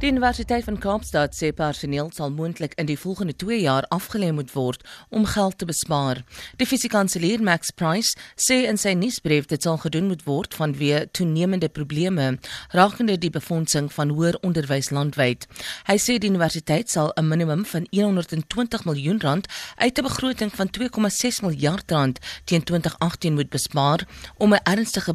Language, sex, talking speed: English, female, 160 wpm